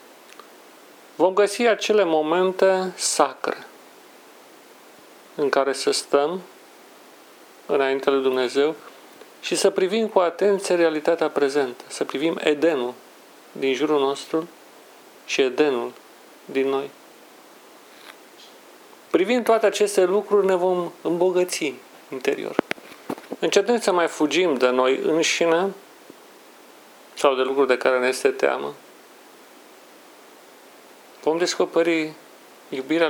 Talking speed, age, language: 100 wpm, 40-59, Romanian